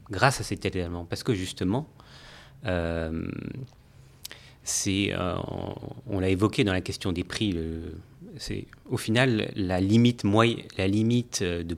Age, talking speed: 30-49, 145 wpm